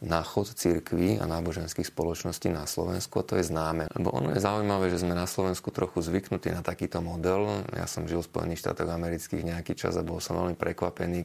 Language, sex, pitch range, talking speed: Slovak, male, 85-95 Hz, 210 wpm